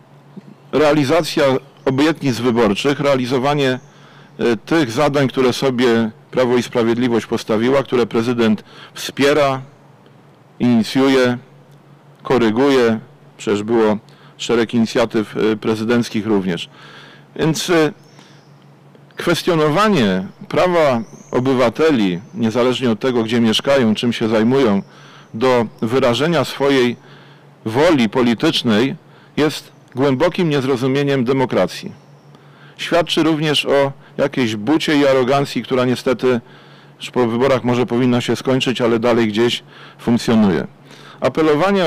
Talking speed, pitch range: 95 wpm, 120-145 Hz